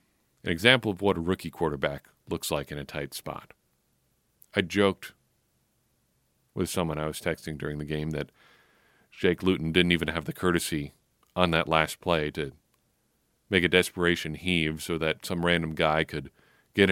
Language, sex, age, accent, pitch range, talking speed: English, male, 40-59, American, 80-100 Hz, 165 wpm